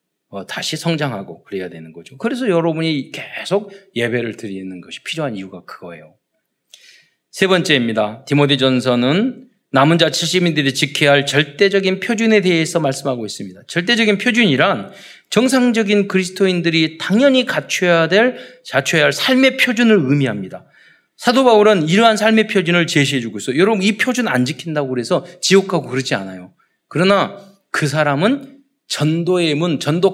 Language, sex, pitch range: Korean, male, 125-195 Hz